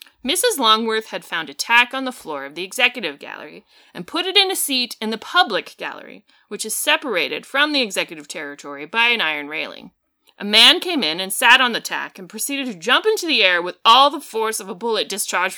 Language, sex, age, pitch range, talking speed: English, female, 30-49, 185-250 Hz, 225 wpm